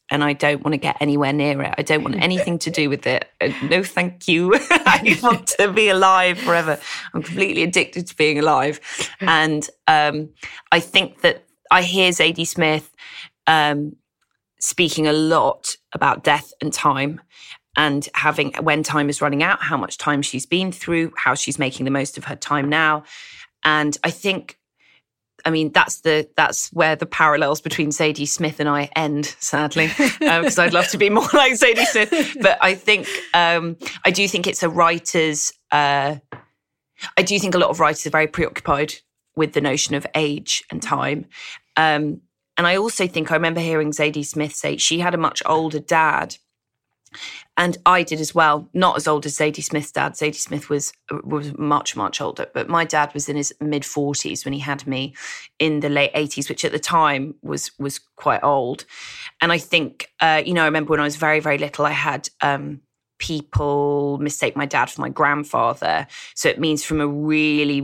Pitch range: 145-170 Hz